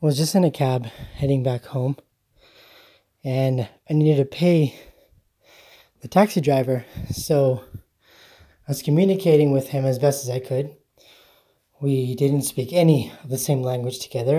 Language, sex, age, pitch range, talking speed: English, male, 20-39, 130-165 Hz, 155 wpm